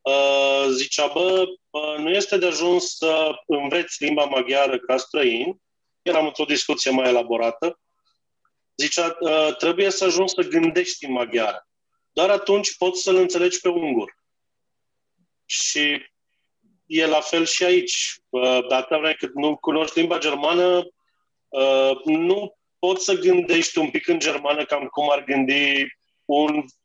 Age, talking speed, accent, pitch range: 30-49, 125 wpm, Romanian, 150-220 Hz